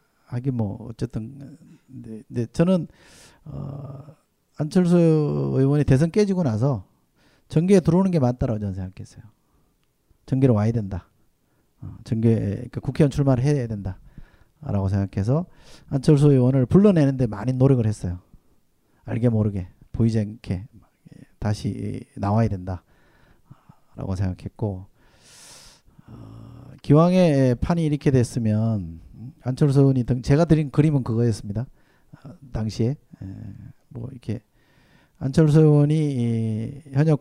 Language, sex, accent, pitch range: Korean, male, native, 110-140 Hz